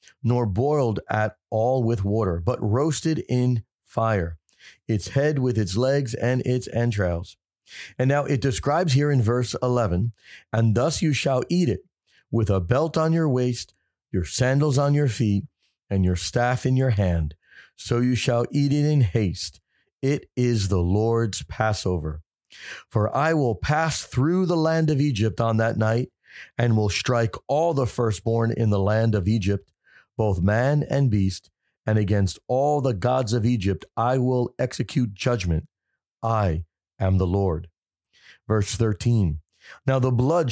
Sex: male